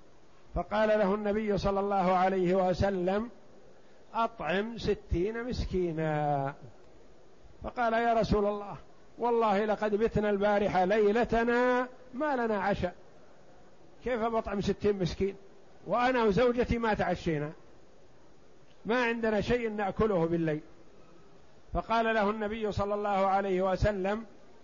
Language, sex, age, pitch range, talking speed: Arabic, male, 50-69, 185-225 Hz, 100 wpm